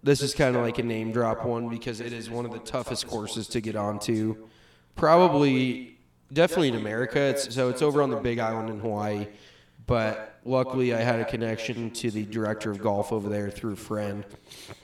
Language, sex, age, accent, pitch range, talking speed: English, male, 20-39, American, 105-125 Hz, 205 wpm